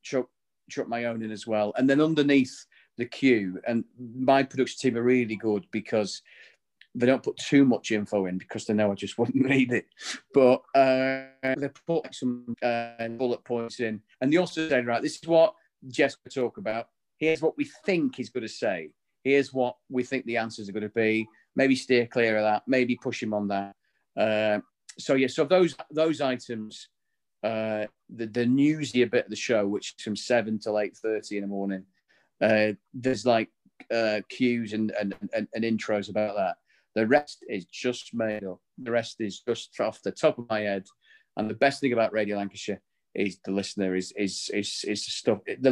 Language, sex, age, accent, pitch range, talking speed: English, male, 40-59, British, 105-130 Hz, 200 wpm